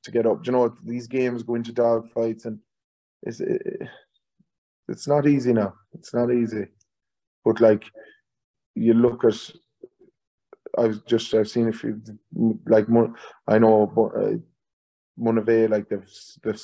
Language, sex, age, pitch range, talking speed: English, male, 20-39, 105-120 Hz, 155 wpm